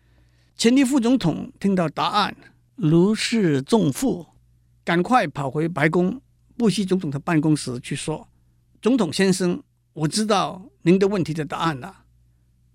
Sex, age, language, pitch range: male, 50-69, Chinese, 115-175 Hz